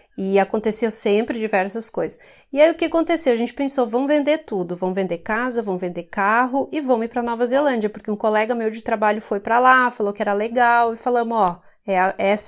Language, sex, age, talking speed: English, female, 30-49, 225 wpm